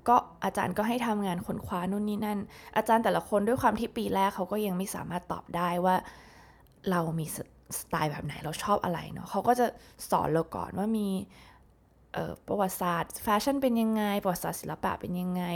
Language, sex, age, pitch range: Thai, female, 20-39, 170-210 Hz